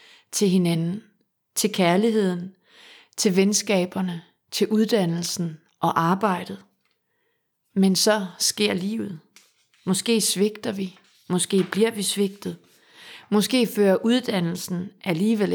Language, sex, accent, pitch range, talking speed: Danish, female, native, 175-210 Hz, 95 wpm